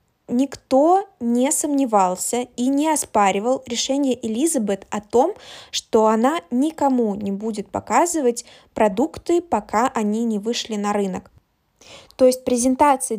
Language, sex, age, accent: Russian, female, 20-39, native